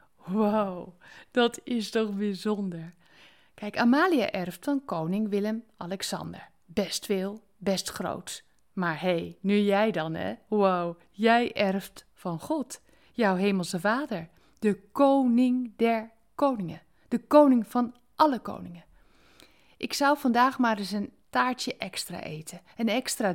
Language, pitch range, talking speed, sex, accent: Dutch, 175-230 Hz, 130 wpm, female, Dutch